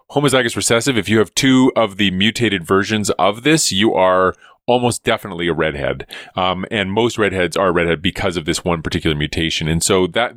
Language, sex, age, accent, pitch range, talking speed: English, male, 30-49, American, 100-135 Hz, 190 wpm